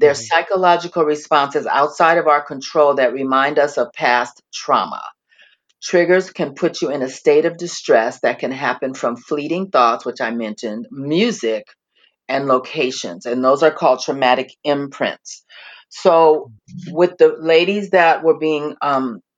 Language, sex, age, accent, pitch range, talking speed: English, female, 40-59, American, 135-175 Hz, 150 wpm